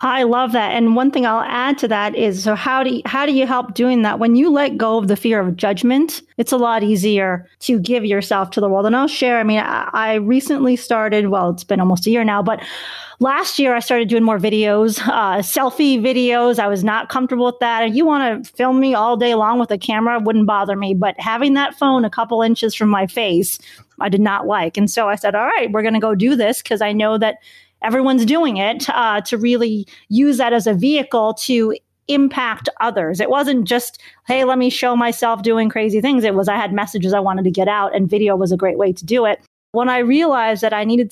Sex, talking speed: female, 245 wpm